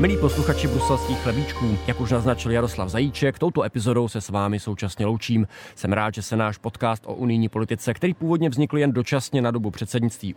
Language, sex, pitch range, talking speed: Czech, male, 105-130 Hz, 190 wpm